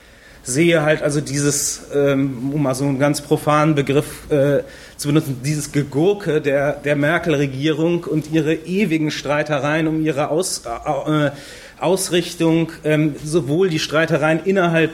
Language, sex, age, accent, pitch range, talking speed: German, male, 30-49, German, 140-165 Hz, 135 wpm